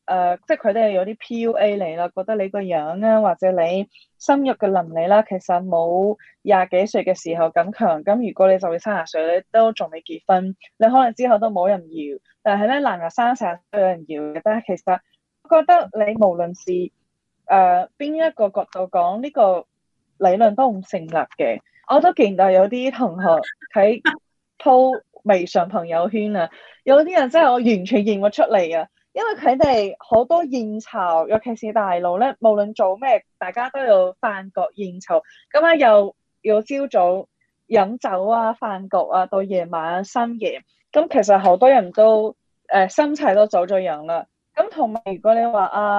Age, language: 20-39, Chinese